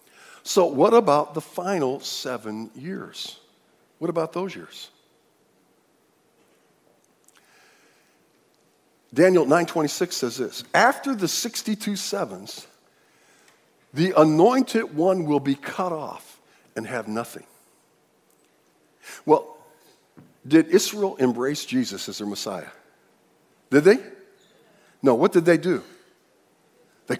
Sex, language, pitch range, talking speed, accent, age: male, English, 155-225 Hz, 100 wpm, American, 50-69